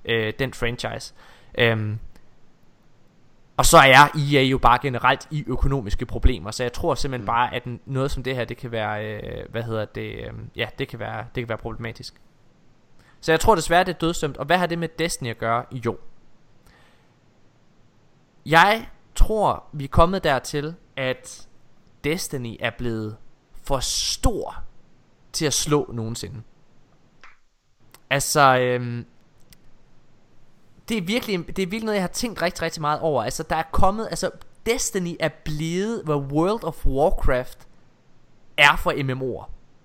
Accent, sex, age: native, male, 20-39